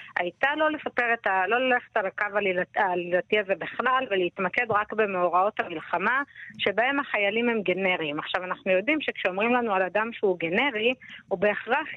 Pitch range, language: 190-245 Hz, Hebrew